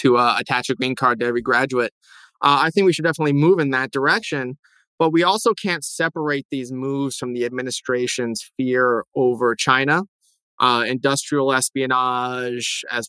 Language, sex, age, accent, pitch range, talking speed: English, male, 20-39, American, 120-140 Hz, 165 wpm